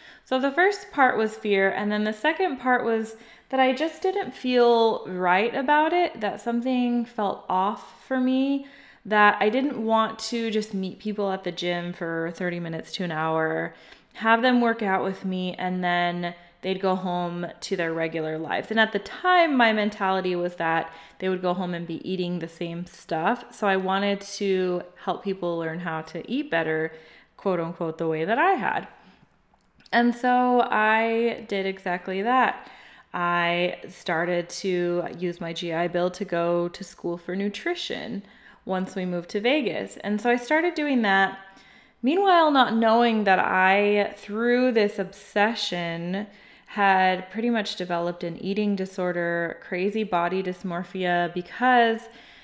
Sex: female